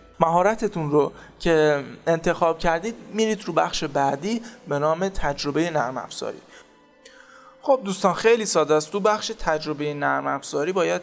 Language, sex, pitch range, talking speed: Persian, male, 145-205 Hz, 135 wpm